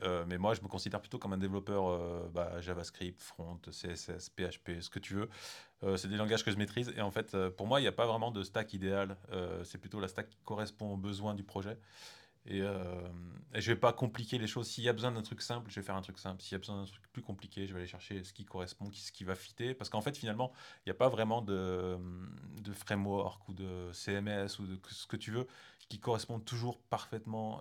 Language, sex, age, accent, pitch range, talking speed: French, male, 20-39, French, 95-110 Hz, 255 wpm